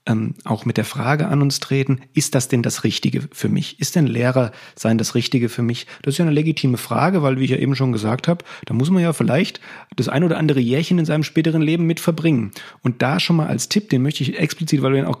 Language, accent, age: German, German, 40-59